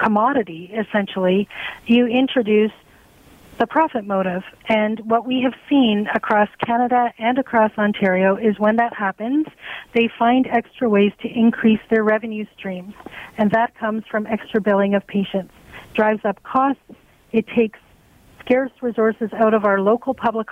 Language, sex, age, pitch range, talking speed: English, female, 40-59, 205-235 Hz, 145 wpm